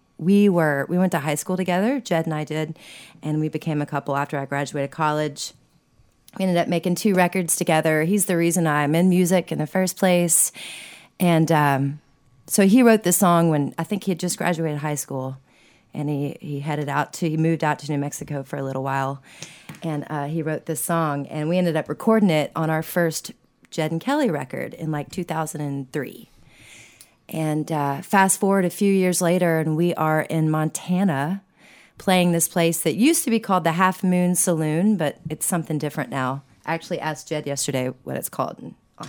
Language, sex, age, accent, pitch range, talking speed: English, female, 30-49, American, 150-185 Hz, 205 wpm